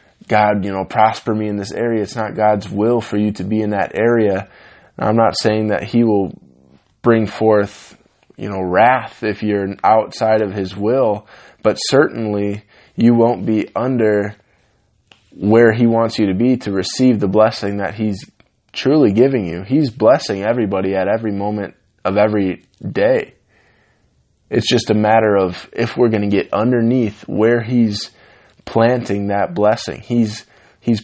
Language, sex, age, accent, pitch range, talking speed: English, male, 20-39, American, 100-115 Hz, 160 wpm